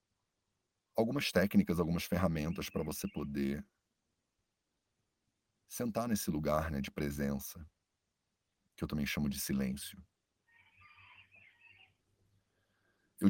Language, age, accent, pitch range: English, 40-59, Brazilian, 80-100 Hz